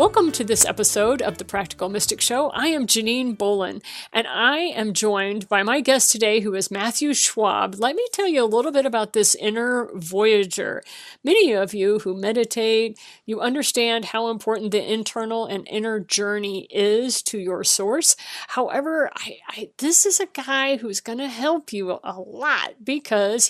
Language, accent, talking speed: English, American, 175 wpm